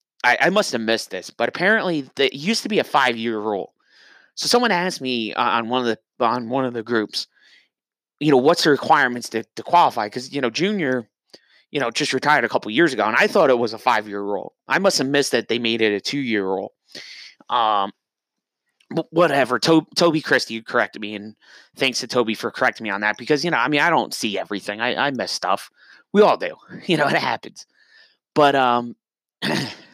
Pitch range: 115-170 Hz